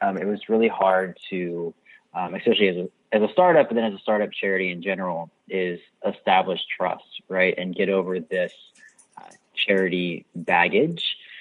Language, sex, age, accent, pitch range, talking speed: English, male, 30-49, American, 100-140 Hz, 170 wpm